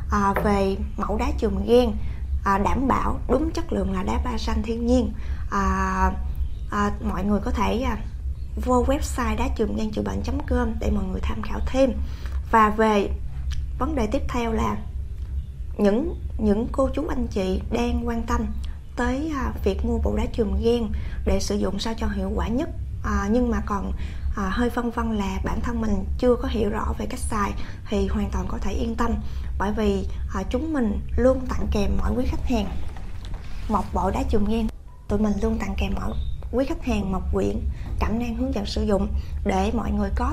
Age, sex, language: 20-39, female, Vietnamese